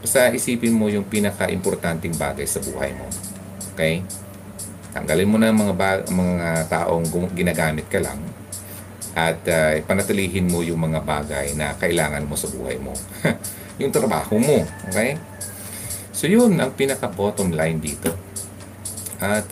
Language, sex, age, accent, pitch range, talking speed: Filipino, male, 30-49, native, 85-105 Hz, 140 wpm